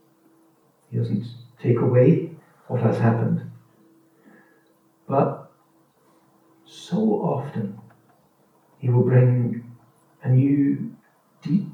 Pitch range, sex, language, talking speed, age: 120-150 Hz, male, English, 80 wpm, 60-79